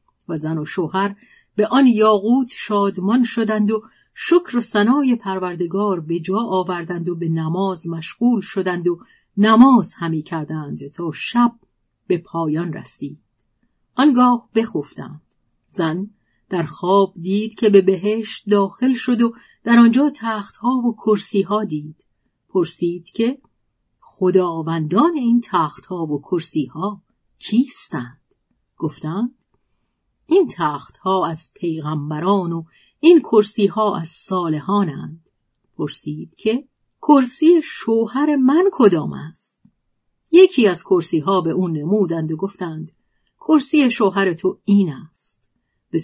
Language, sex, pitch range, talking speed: Persian, female, 165-235 Hz, 120 wpm